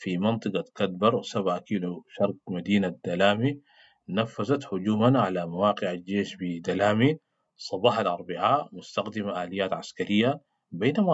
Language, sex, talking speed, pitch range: English, male, 110 wpm, 95-115 Hz